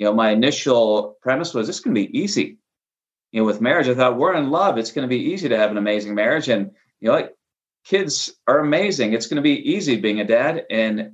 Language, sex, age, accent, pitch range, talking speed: English, male, 30-49, American, 110-130 Hz, 255 wpm